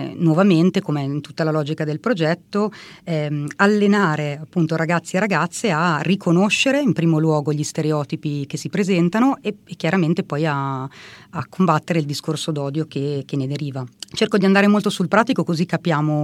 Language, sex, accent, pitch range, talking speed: Italian, female, native, 150-185 Hz, 170 wpm